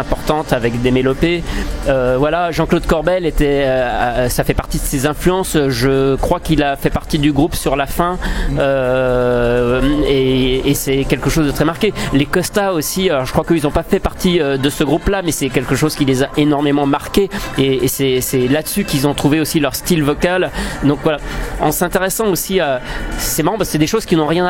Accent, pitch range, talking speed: French, 135-175 Hz, 210 wpm